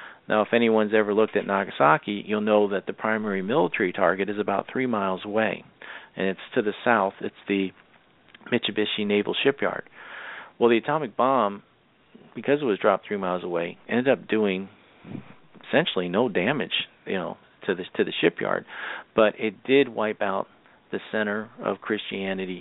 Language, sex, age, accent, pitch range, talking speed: English, male, 40-59, American, 95-125 Hz, 165 wpm